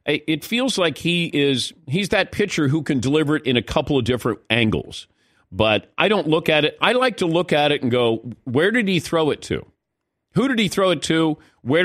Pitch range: 125-175 Hz